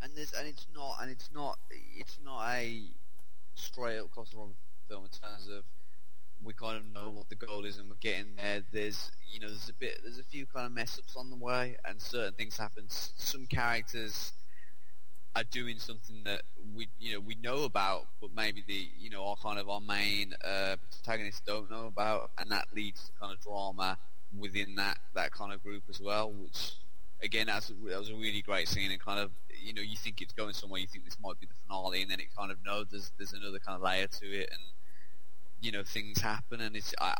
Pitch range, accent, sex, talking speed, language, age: 100-115 Hz, British, male, 225 wpm, English, 20-39